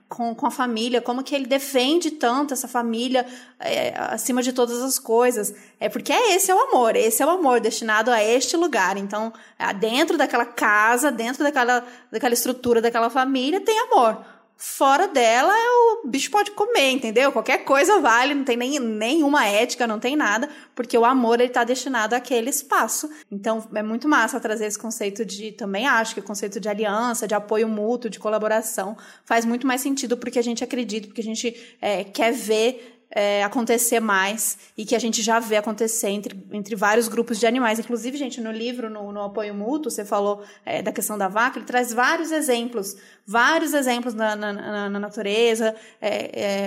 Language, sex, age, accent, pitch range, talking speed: Portuguese, female, 20-39, Brazilian, 220-255 Hz, 185 wpm